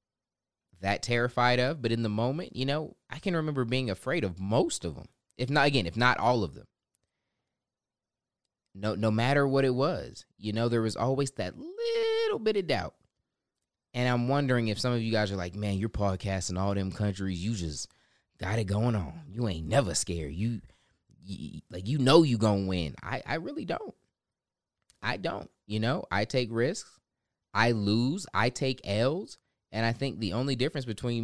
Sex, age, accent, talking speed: male, 20-39, American, 195 wpm